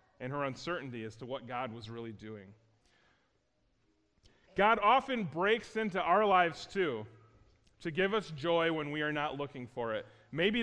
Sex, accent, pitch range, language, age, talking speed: male, American, 130-200 Hz, English, 30-49, 165 wpm